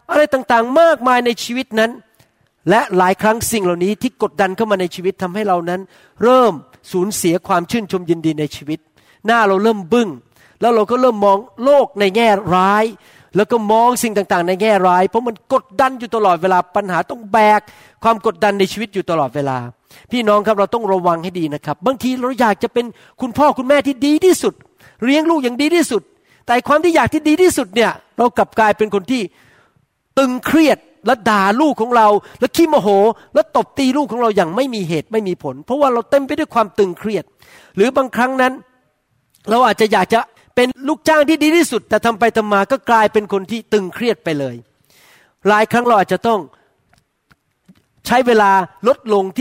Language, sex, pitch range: Thai, male, 190-245 Hz